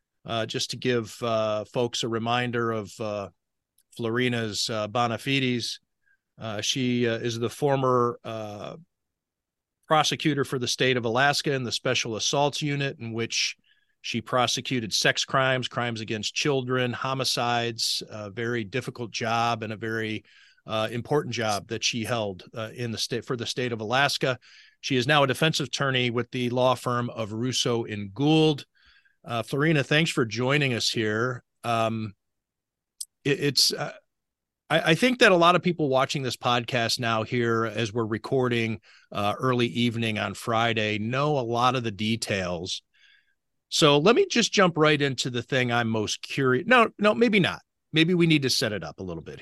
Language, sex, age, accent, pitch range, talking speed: English, male, 40-59, American, 115-140 Hz, 170 wpm